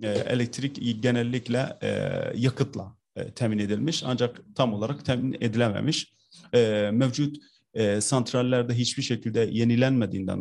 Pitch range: 105-130 Hz